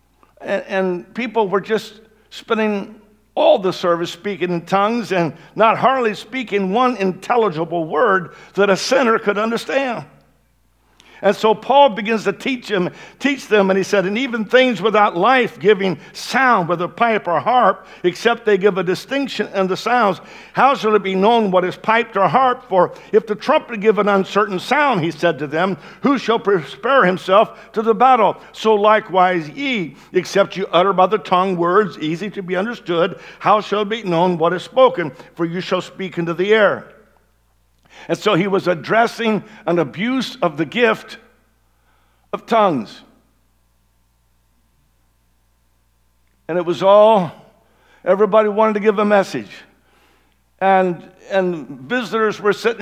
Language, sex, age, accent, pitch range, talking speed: English, male, 60-79, American, 170-220 Hz, 155 wpm